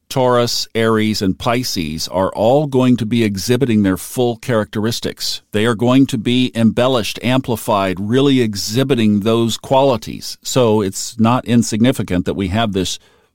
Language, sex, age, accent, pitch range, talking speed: English, male, 50-69, American, 95-115 Hz, 145 wpm